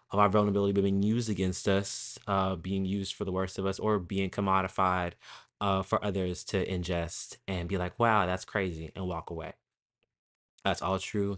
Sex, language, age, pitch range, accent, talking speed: male, English, 20-39, 90-120 Hz, American, 185 wpm